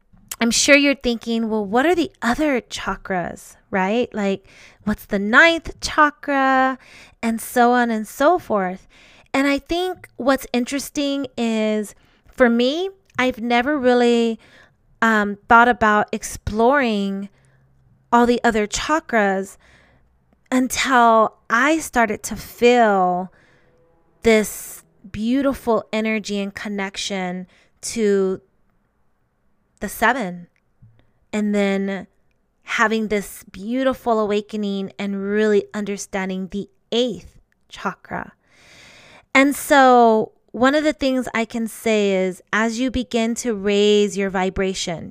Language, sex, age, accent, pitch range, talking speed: English, female, 20-39, American, 195-245 Hz, 110 wpm